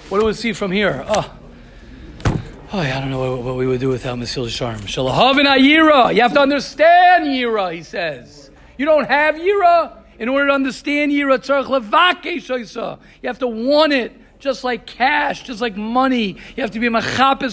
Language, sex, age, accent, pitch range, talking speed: English, male, 40-59, American, 215-270 Hz, 180 wpm